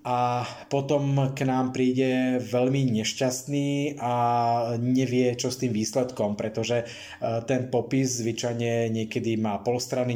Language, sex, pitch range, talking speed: Slovak, male, 115-135 Hz, 125 wpm